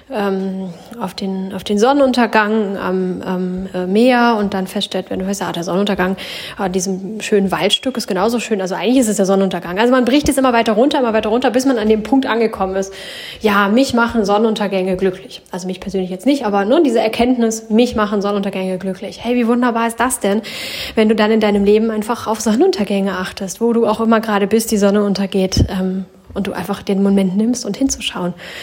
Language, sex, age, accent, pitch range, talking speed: German, female, 10-29, German, 195-240 Hz, 210 wpm